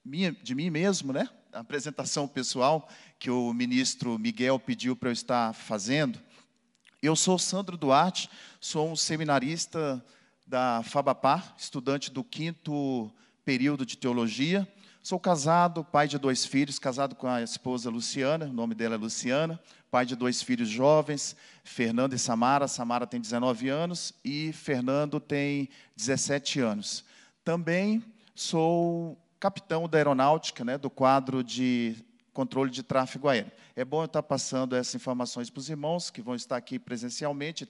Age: 40-59